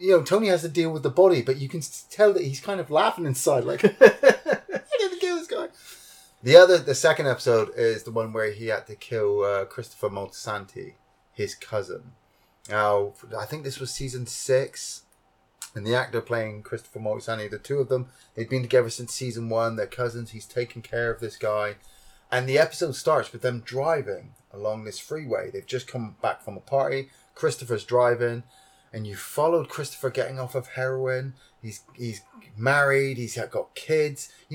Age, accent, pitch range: 30-49, British, 115-155 Hz